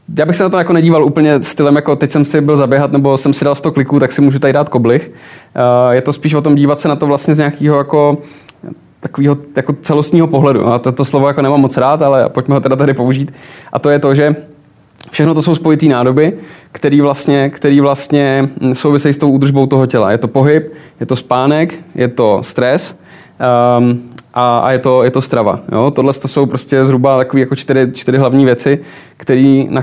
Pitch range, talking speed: 135-150 Hz, 210 wpm